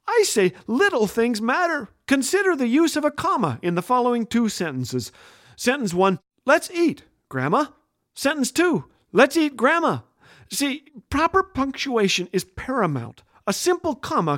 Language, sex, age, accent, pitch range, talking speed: English, male, 40-59, American, 155-255 Hz, 140 wpm